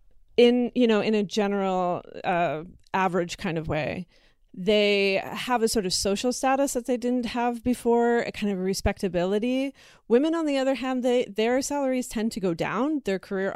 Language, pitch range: English, 180-235 Hz